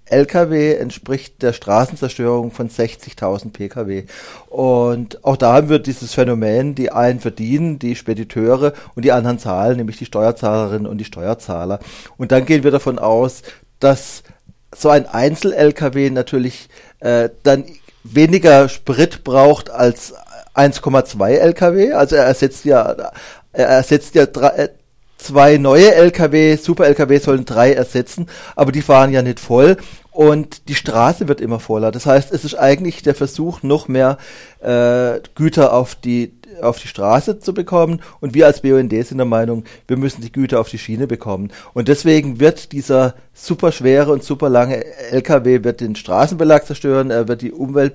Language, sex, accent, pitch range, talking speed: German, male, German, 120-145 Hz, 155 wpm